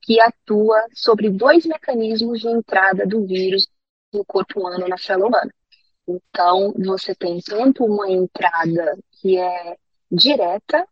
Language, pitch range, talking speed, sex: Portuguese, 185-250 Hz, 130 wpm, female